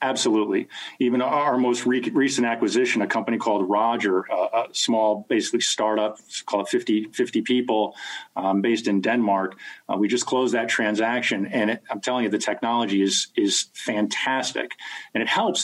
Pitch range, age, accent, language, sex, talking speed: 105-125 Hz, 40-59, American, English, male, 155 wpm